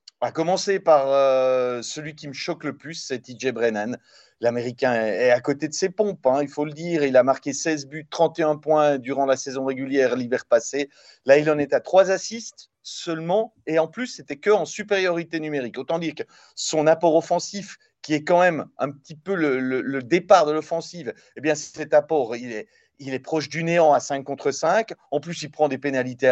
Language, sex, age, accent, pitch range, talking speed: French, male, 40-59, French, 140-175 Hz, 215 wpm